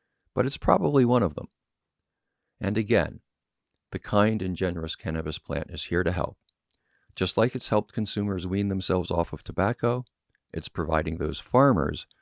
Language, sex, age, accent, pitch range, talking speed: English, male, 50-69, American, 80-105 Hz, 155 wpm